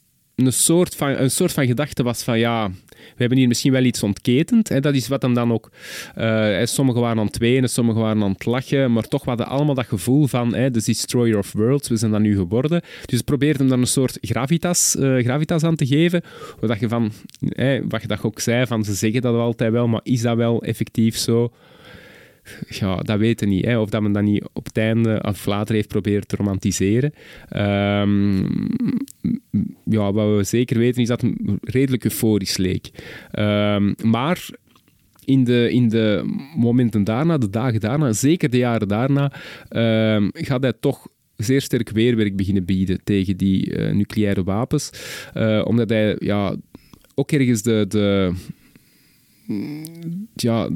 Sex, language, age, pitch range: male, Dutch, 20-39, 105-135 Hz